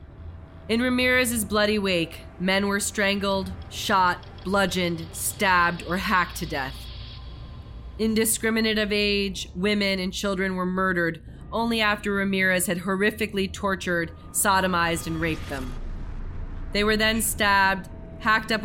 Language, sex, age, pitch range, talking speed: English, female, 30-49, 170-215 Hz, 120 wpm